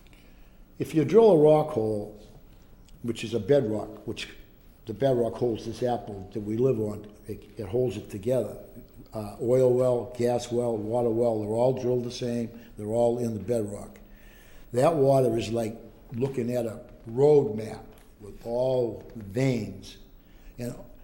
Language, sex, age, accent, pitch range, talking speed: English, male, 60-79, American, 110-135 Hz, 155 wpm